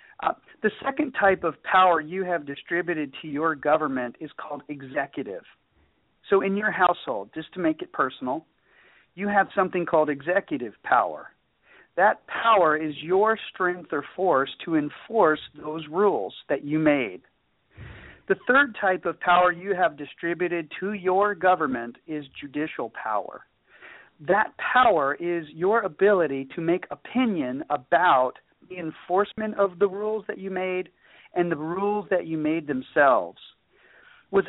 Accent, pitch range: American, 150-195 Hz